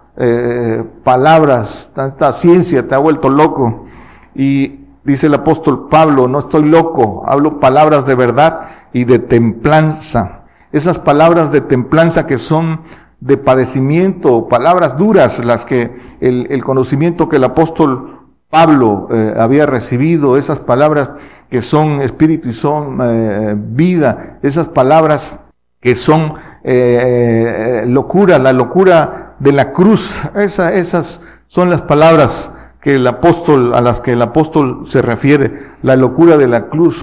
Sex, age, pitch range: male, 50-69, 125-160 Hz